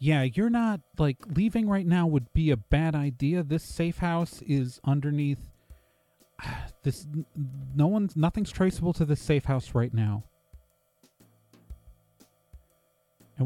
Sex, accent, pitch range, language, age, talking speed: male, American, 120-180 Hz, English, 30-49, 130 wpm